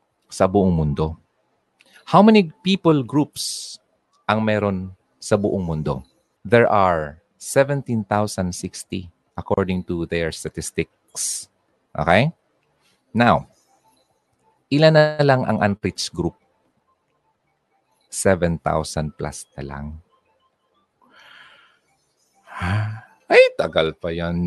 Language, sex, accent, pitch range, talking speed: Filipino, male, native, 85-120 Hz, 85 wpm